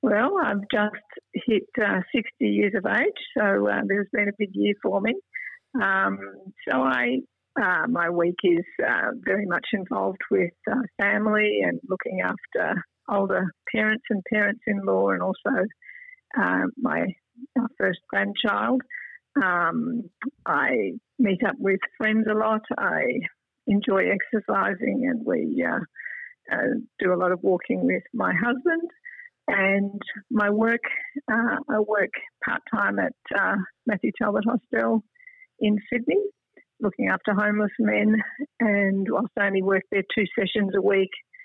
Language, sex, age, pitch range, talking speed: English, female, 60-79, 190-245 Hz, 140 wpm